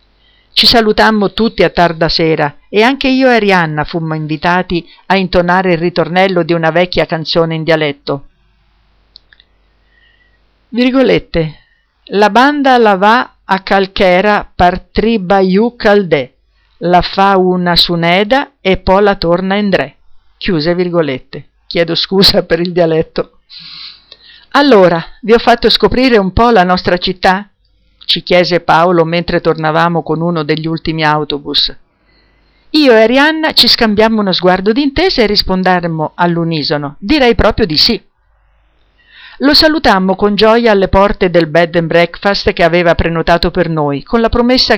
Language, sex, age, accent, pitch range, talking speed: Italian, female, 50-69, native, 165-210 Hz, 140 wpm